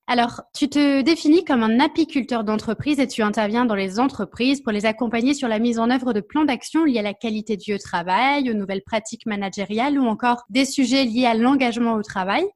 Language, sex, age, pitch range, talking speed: French, female, 20-39, 220-275 Hz, 210 wpm